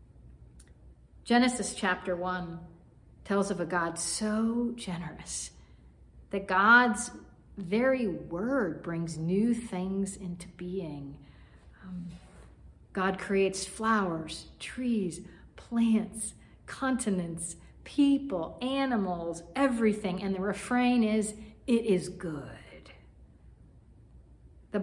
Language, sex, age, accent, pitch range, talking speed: English, female, 50-69, American, 175-220 Hz, 85 wpm